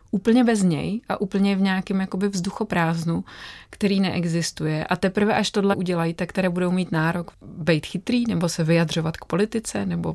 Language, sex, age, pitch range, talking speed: Czech, female, 30-49, 165-185 Hz, 160 wpm